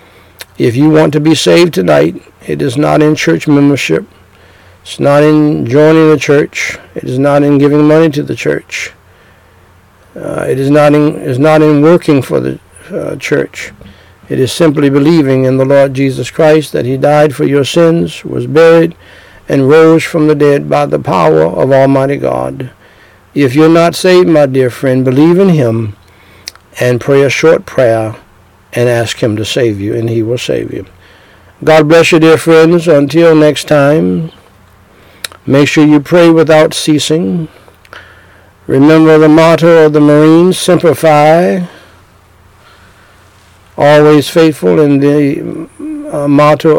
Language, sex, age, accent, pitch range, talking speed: English, male, 60-79, American, 100-155 Hz, 155 wpm